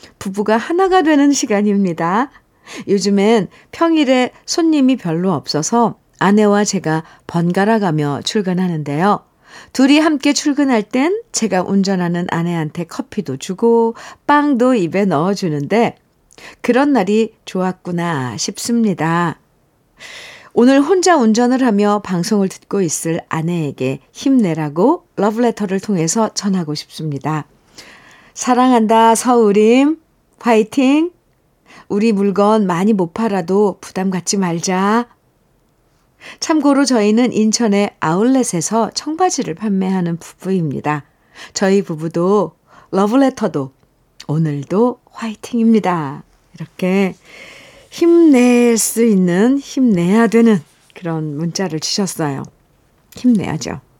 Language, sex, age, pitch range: Korean, female, 50-69, 175-245 Hz